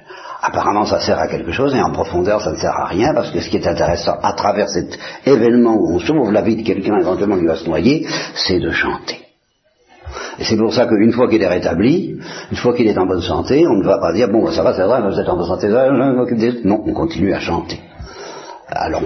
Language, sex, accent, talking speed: Italian, male, French, 250 wpm